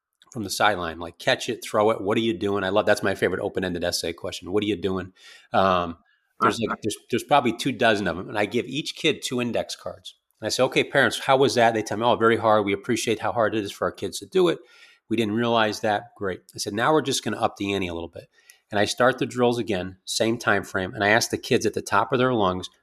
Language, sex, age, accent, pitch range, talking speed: English, male, 30-49, American, 100-120 Hz, 275 wpm